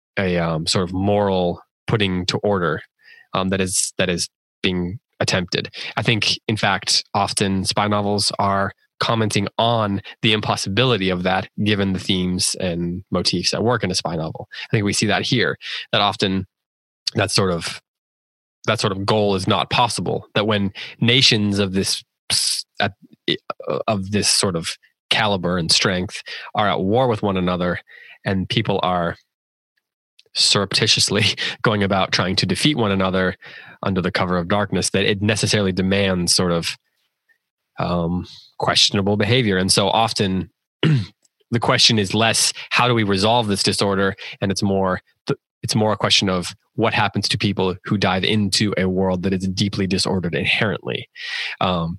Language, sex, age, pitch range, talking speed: English, male, 20-39, 95-110 Hz, 160 wpm